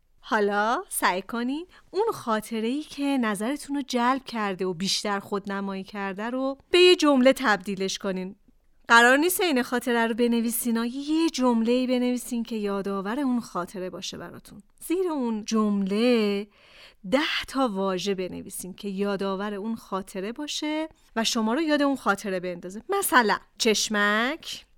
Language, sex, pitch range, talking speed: Persian, female, 200-270 Hz, 140 wpm